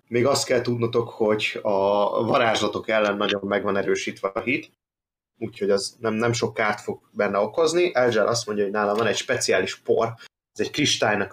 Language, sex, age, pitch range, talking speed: Hungarian, male, 30-49, 100-125 Hz, 180 wpm